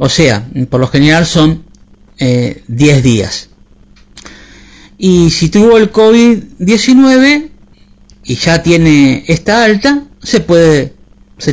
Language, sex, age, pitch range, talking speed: Spanish, male, 50-69, 155-250 Hz, 110 wpm